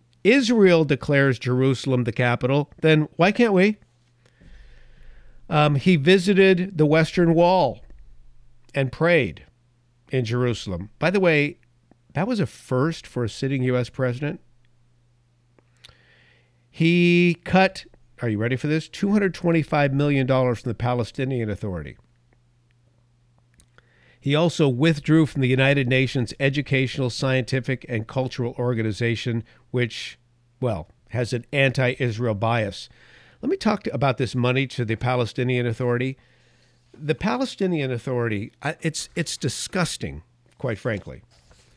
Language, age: English, 50-69